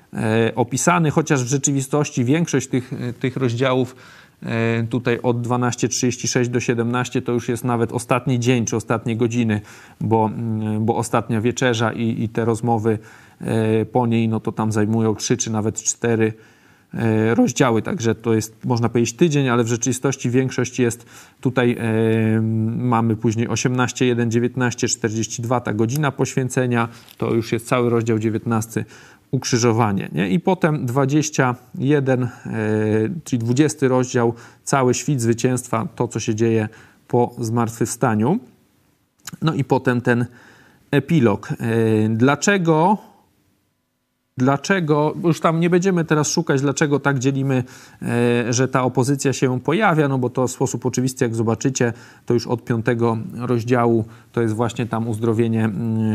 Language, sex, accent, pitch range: Polish, male, native, 115-130 Hz